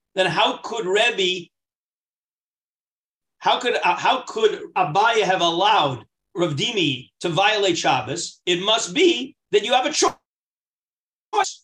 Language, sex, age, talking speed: English, male, 40-59, 130 wpm